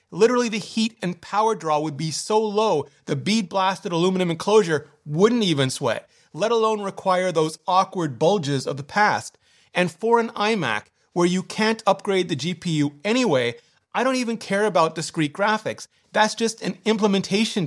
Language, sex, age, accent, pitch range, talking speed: English, male, 30-49, American, 165-210 Hz, 165 wpm